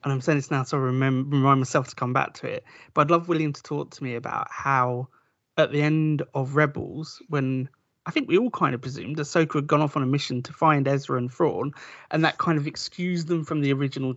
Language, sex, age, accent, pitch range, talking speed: English, male, 30-49, British, 130-155 Hz, 250 wpm